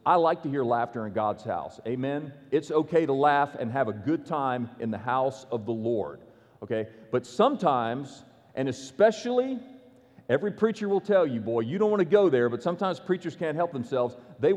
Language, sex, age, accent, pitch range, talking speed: English, male, 40-59, American, 125-175 Hz, 200 wpm